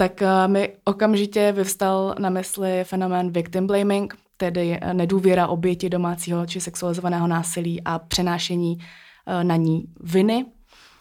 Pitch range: 175-195 Hz